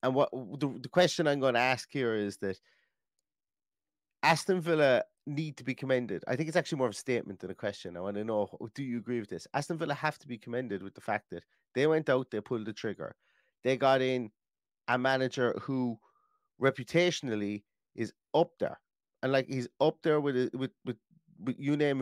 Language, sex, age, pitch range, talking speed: English, male, 30-49, 115-145 Hz, 205 wpm